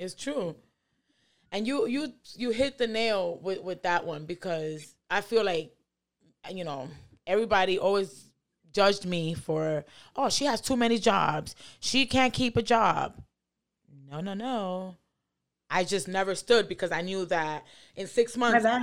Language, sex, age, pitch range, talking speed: English, female, 20-39, 175-225 Hz, 155 wpm